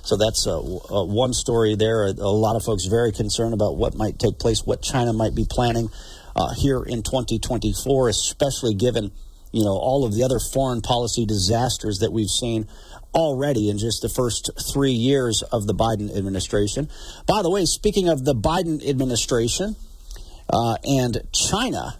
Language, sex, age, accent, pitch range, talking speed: English, male, 50-69, American, 110-150 Hz, 170 wpm